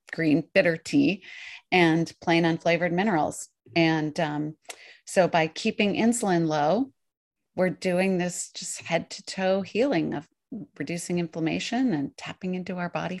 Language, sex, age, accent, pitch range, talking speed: English, female, 30-49, American, 165-220 Hz, 135 wpm